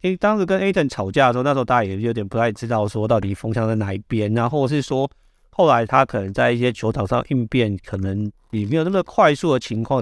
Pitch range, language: 105-135 Hz, Chinese